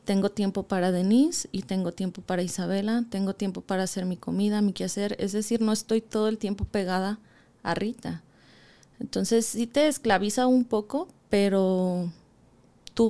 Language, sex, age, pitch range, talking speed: Spanish, female, 20-39, 190-230 Hz, 160 wpm